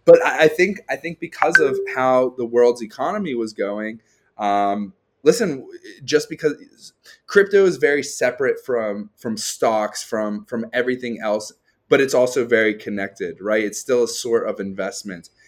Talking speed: 155 wpm